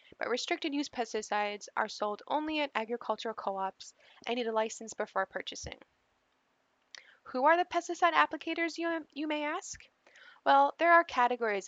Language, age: English, 10-29